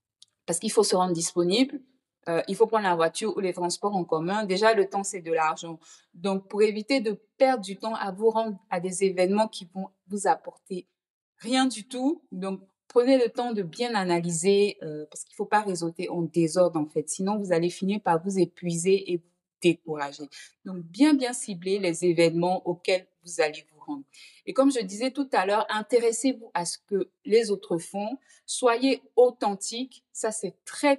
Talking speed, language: 195 wpm, French